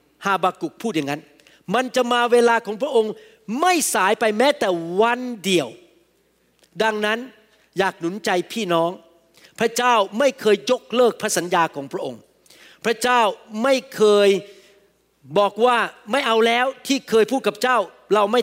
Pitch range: 195-255 Hz